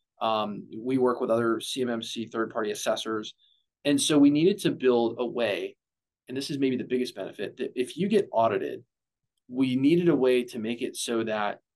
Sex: male